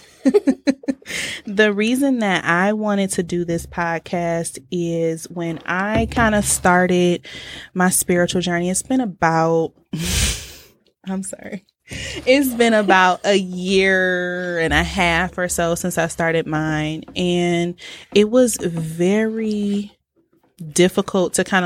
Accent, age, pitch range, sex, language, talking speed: American, 20-39, 165-200 Hz, female, English, 120 wpm